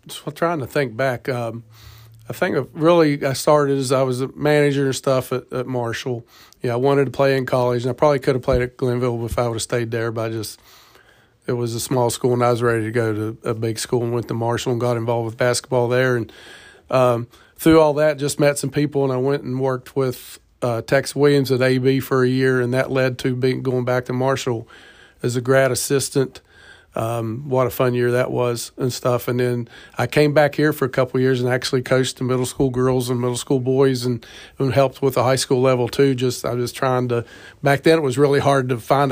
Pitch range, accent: 120-135 Hz, American